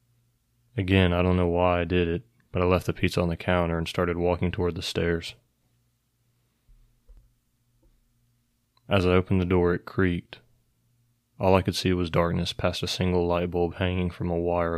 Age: 20-39